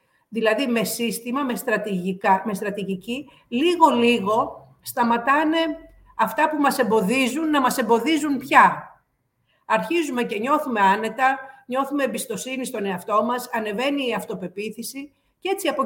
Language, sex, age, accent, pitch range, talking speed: Greek, female, 50-69, native, 210-275 Hz, 120 wpm